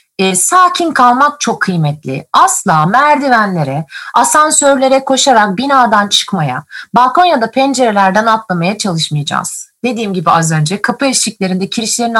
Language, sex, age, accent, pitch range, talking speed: Turkish, female, 30-49, native, 195-275 Hz, 115 wpm